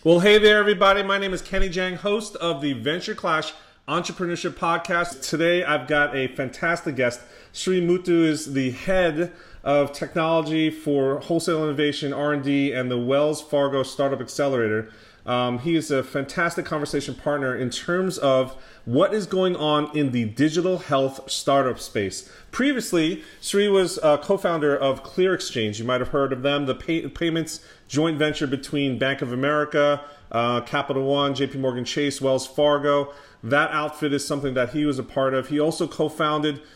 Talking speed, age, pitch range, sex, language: 165 wpm, 30-49, 130-165 Hz, male, English